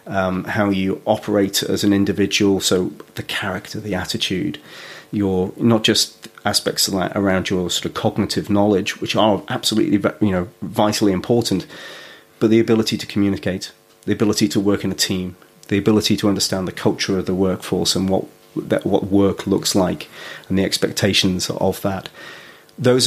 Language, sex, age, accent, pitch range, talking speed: English, male, 30-49, British, 95-110 Hz, 170 wpm